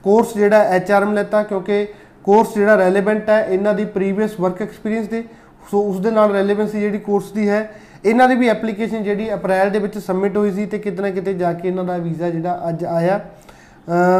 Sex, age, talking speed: male, 20-39, 200 wpm